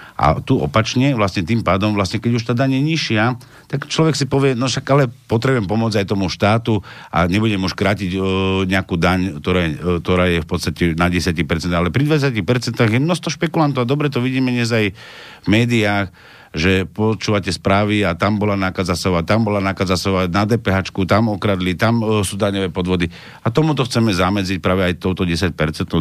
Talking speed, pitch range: 175 wpm, 95-130 Hz